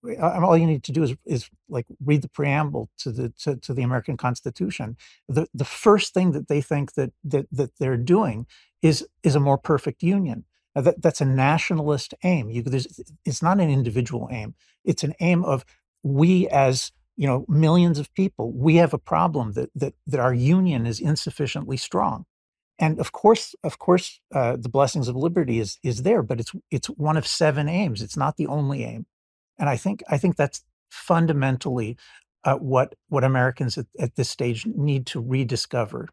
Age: 50-69